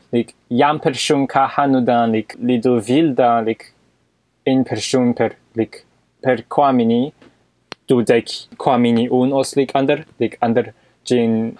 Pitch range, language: 115-140 Hz, English